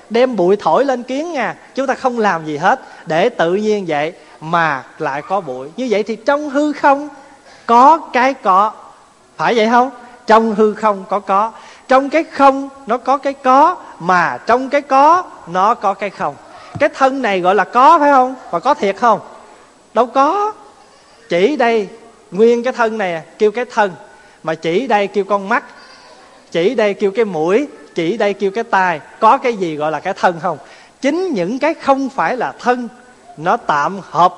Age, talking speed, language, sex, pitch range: 20-39, 190 wpm, Vietnamese, male, 195-270 Hz